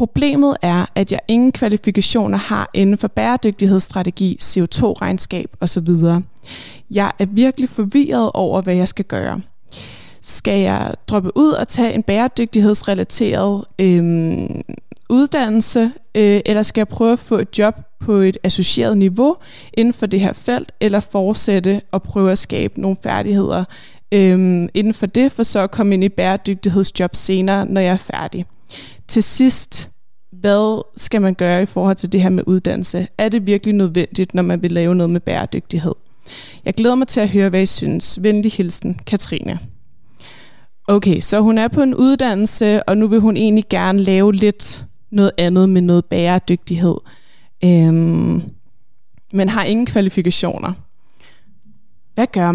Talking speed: 155 wpm